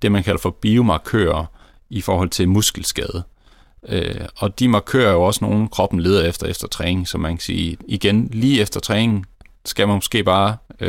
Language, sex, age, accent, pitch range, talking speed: Danish, male, 30-49, native, 90-110 Hz, 180 wpm